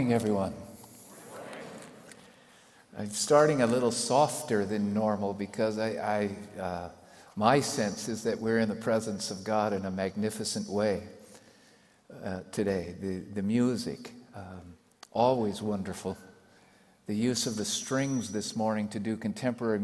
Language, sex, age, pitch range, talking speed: English, male, 50-69, 105-125 Hz, 140 wpm